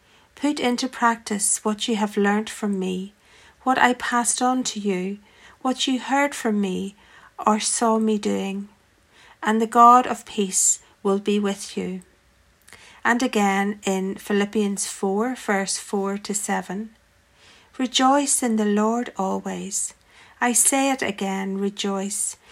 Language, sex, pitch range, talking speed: English, female, 200-240 Hz, 140 wpm